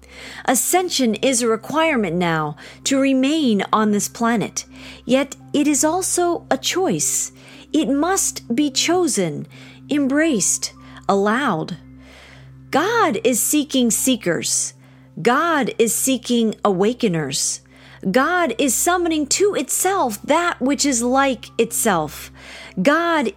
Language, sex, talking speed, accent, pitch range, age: English, female, 105 wpm, American, 190-300 Hz, 40-59